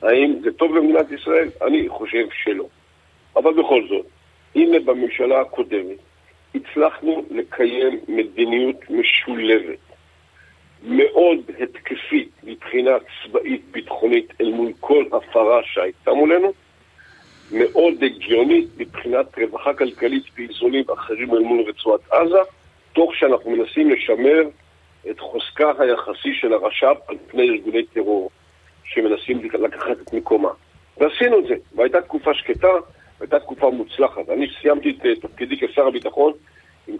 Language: Hebrew